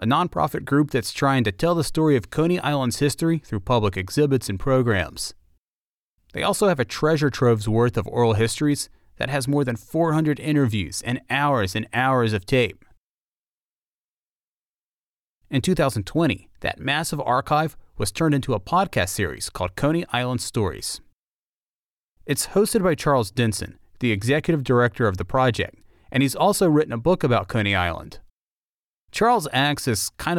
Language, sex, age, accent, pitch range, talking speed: English, male, 30-49, American, 105-145 Hz, 155 wpm